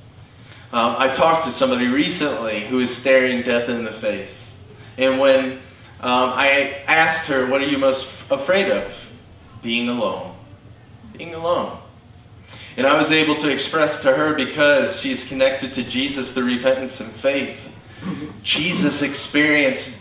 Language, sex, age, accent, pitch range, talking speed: English, male, 30-49, American, 110-145 Hz, 145 wpm